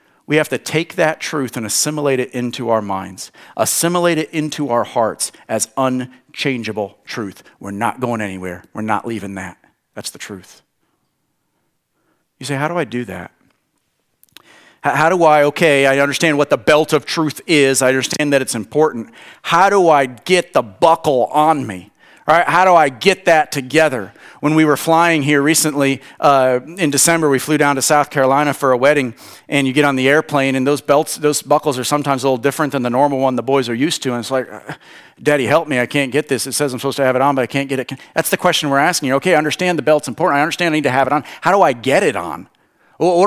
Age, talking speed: 40-59, 225 wpm